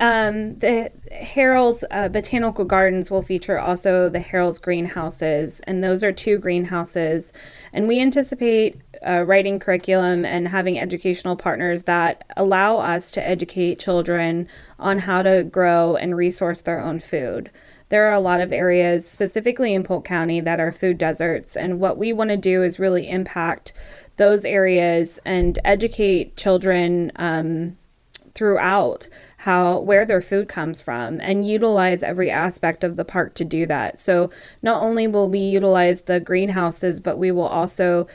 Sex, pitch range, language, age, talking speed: female, 175-195 Hz, English, 20-39, 155 wpm